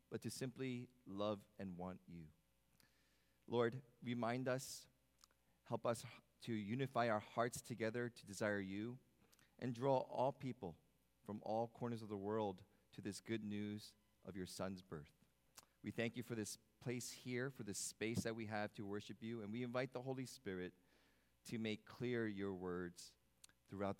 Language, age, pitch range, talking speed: English, 40-59, 95-130 Hz, 165 wpm